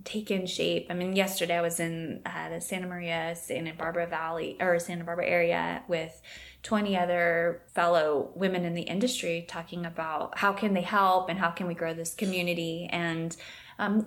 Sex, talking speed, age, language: female, 185 wpm, 20-39, English